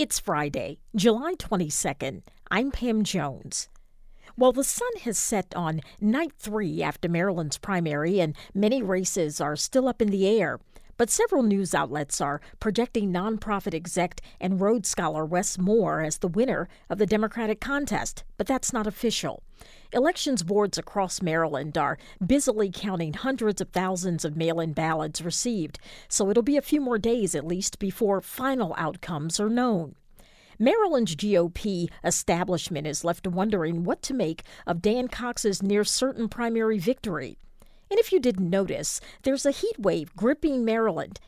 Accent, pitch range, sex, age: American, 175-240 Hz, female, 50-69